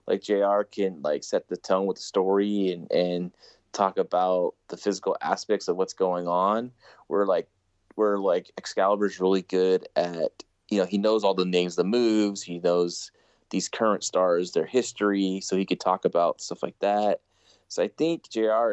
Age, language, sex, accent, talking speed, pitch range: 20-39, English, male, American, 185 wpm, 95-120 Hz